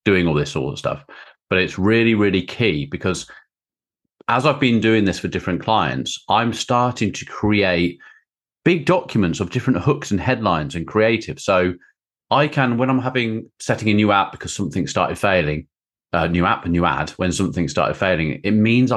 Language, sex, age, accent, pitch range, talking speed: English, male, 30-49, British, 90-115 Hz, 185 wpm